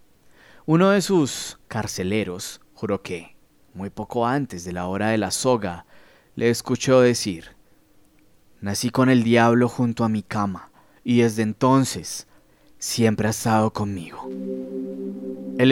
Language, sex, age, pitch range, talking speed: Spanish, male, 20-39, 100-140 Hz, 130 wpm